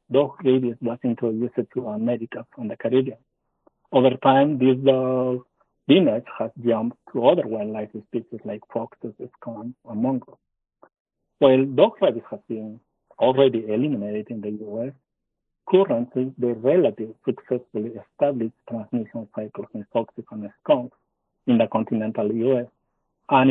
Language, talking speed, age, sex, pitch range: English, 135 wpm, 60-79, male, 115-135 Hz